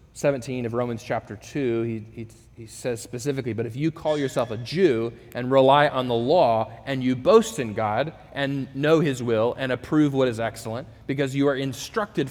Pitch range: 120-165 Hz